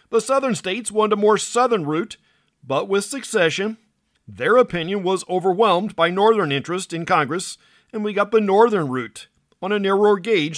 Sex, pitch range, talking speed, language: male, 160-215 Hz, 170 wpm, English